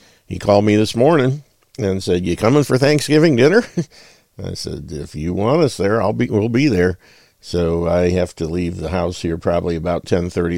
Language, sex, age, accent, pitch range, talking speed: English, male, 50-69, American, 85-105 Hz, 205 wpm